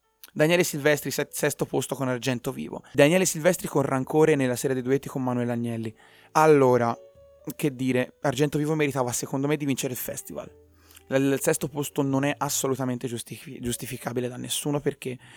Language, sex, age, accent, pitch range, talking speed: Italian, male, 30-49, native, 125-155 Hz, 155 wpm